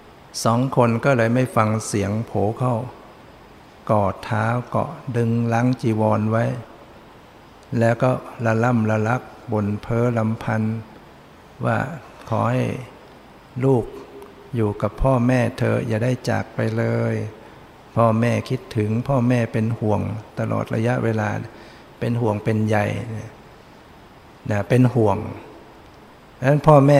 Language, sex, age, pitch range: English, male, 60-79, 110-125 Hz